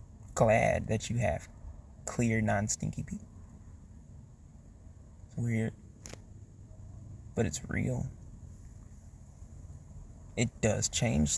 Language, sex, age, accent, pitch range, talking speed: English, male, 20-39, American, 95-120 Hz, 80 wpm